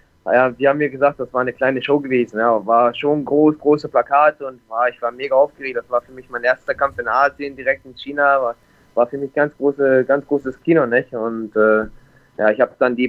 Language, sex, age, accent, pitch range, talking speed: German, male, 20-39, German, 130-155 Hz, 240 wpm